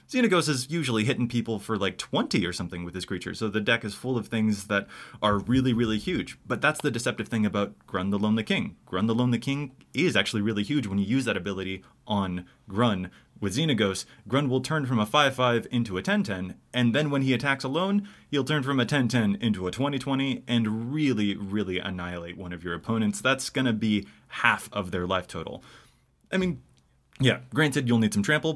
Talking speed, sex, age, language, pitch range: 210 wpm, male, 20-39, English, 105-135 Hz